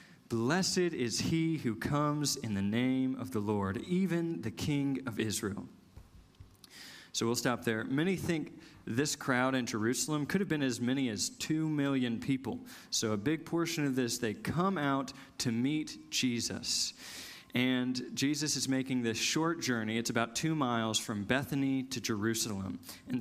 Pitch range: 115-145 Hz